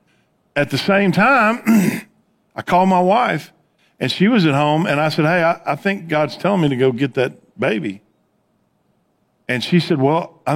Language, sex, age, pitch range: English, male, 50-69, 130-175 Hz